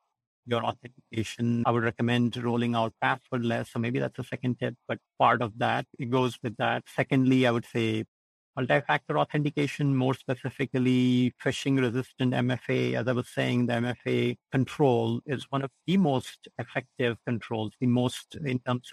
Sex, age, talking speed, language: male, 50-69, 160 wpm, English